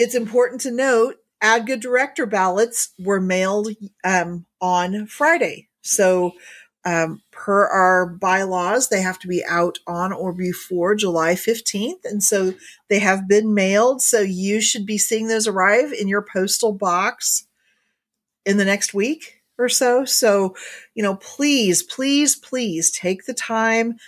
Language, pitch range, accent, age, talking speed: English, 190-225 Hz, American, 40-59, 145 wpm